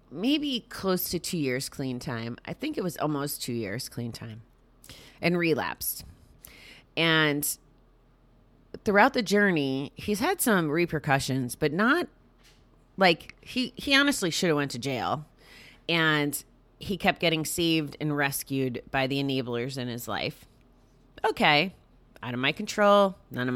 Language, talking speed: English, 145 wpm